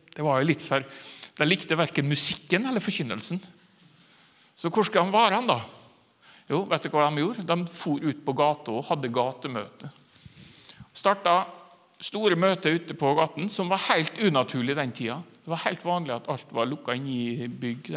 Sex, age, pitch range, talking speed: male, 60-79, 135-180 Hz, 170 wpm